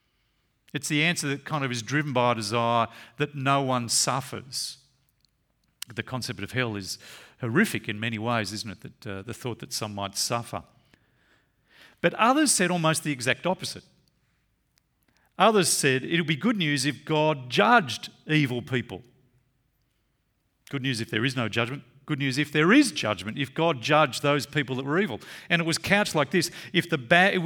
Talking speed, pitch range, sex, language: 180 wpm, 125-170 Hz, male, English